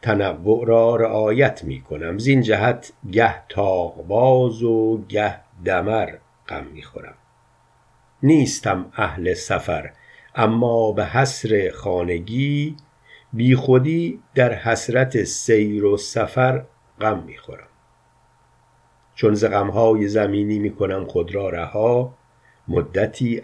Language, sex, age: Persian, male, 50-69